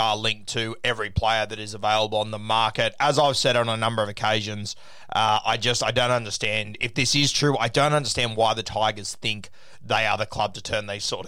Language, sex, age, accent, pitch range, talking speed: English, male, 20-39, Australian, 110-130 Hz, 230 wpm